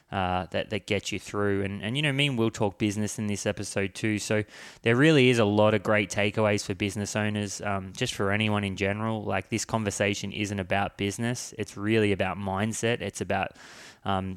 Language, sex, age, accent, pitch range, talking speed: English, male, 20-39, Australian, 100-110 Hz, 210 wpm